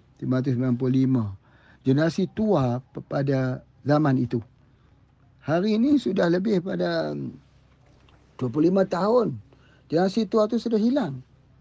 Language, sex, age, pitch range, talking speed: Malay, male, 50-69, 130-210 Hz, 95 wpm